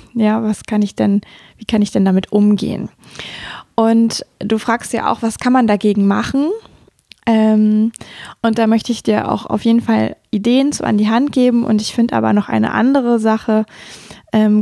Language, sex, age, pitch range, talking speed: German, female, 20-39, 195-225 Hz, 190 wpm